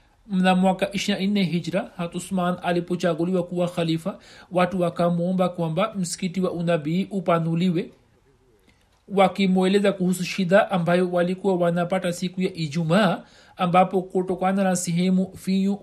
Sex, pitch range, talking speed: male, 170-185 Hz, 110 wpm